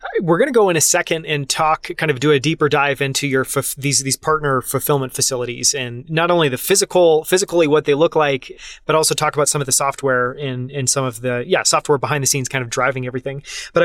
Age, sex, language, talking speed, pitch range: 30-49, male, English, 245 wpm, 130-155 Hz